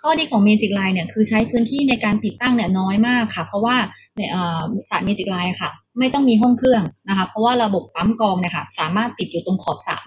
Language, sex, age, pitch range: Thai, female, 20-39, 195-235 Hz